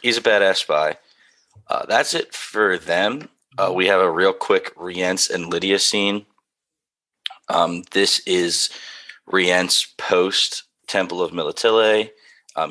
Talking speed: 130 wpm